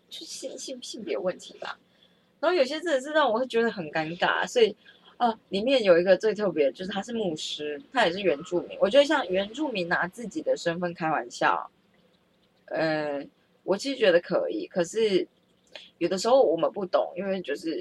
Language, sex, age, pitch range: Chinese, female, 20-39, 175-275 Hz